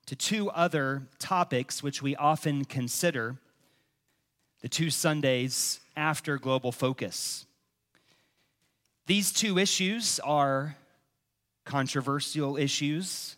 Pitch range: 130-160 Hz